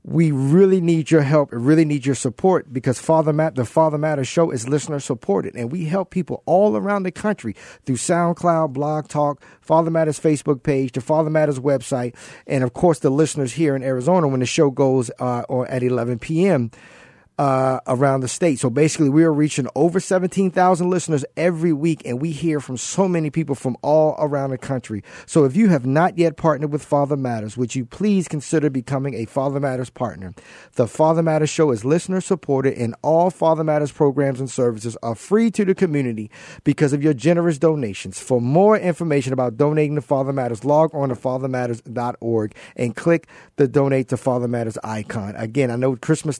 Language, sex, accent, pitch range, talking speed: English, male, American, 130-160 Hz, 195 wpm